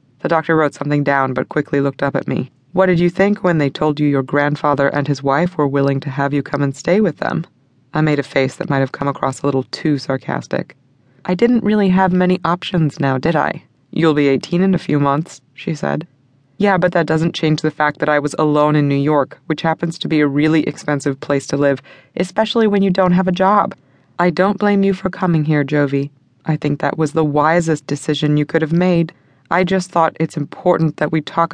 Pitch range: 140-180 Hz